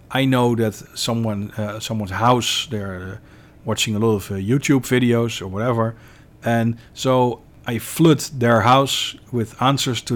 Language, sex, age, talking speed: English, male, 40-59, 160 wpm